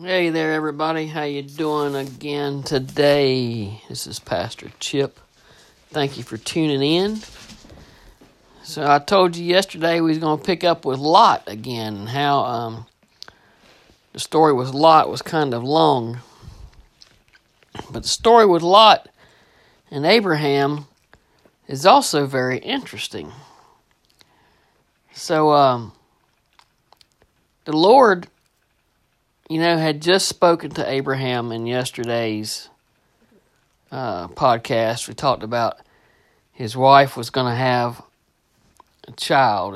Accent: American